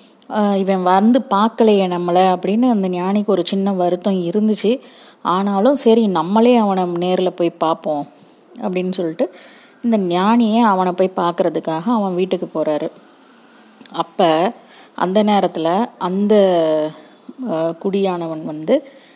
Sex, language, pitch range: female, Tamil, 175-220 Hz